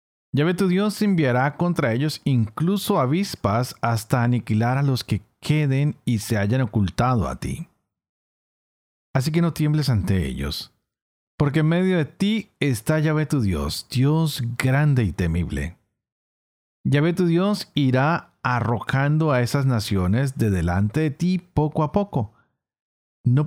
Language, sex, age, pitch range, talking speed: Spanish, male, 40-59, 105-155 Hz, 140 wpm